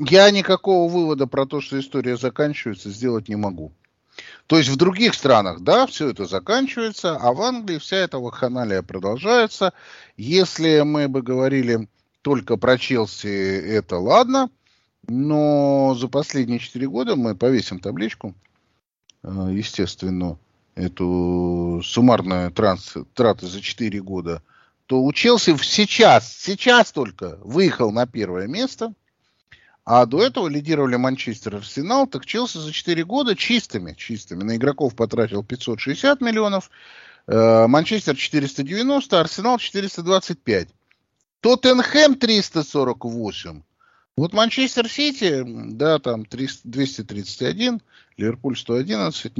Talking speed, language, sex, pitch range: 115 wpm, Russian, male, 105-175 Hz